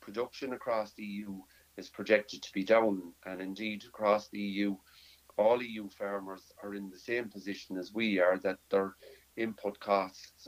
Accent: Irish